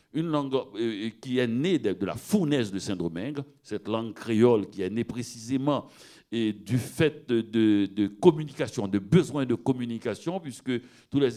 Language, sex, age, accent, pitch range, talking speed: French, male, 60-79, French, 110-155 Hz, 160 wpm